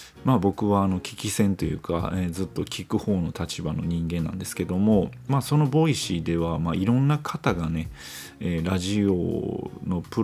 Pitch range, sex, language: 85-115 Hz, male, Japanese